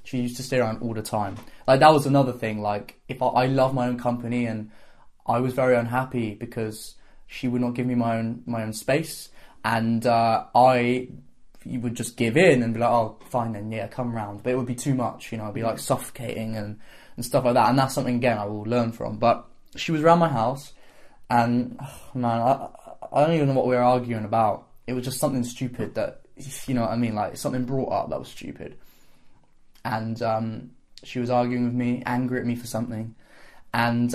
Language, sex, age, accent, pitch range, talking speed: English, male, 10-29, British, 115-130 Hz, 220 wpm